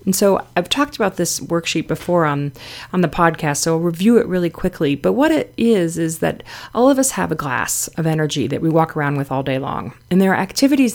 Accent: American